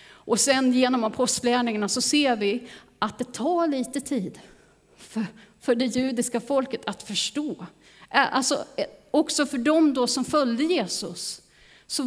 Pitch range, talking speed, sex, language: 205-265 Hz, 135 wpm, female, Swedish